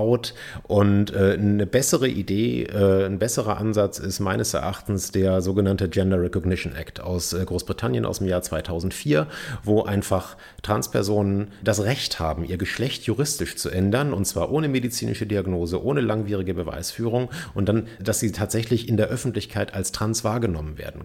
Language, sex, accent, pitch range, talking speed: German, male, German, 95-120 Hz, 150 wpm